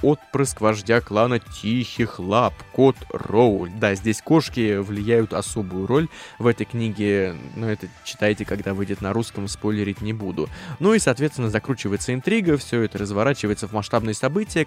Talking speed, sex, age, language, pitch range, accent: 150 wpm, male, 20-39, Russian, 100-130 Hz, native